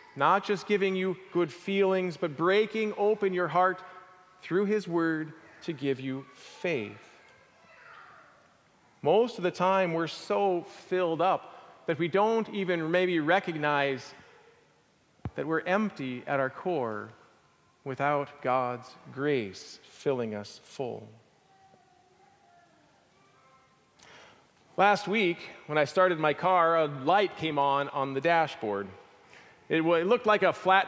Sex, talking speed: male, 120 wpm